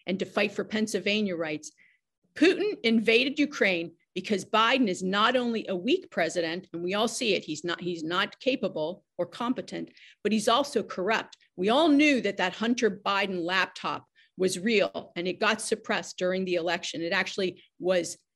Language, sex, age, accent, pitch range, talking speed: English, female, 40-59, American, 185-240 Hz, 175 wpm